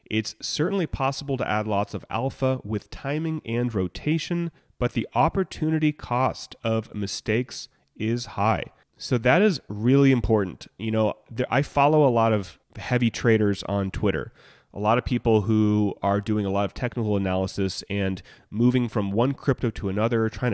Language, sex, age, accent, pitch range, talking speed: English, male, 30-49, American, 105-130 Hz, 165 wpm